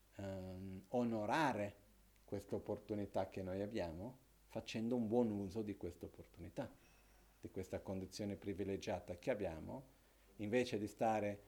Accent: native